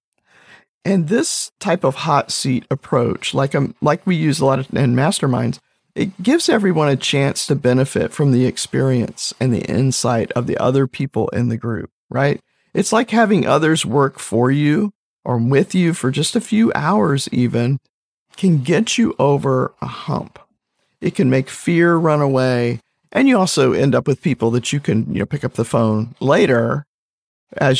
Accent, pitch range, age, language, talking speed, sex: American, 125-145 Hz, 50-69, English, 180 wpm, male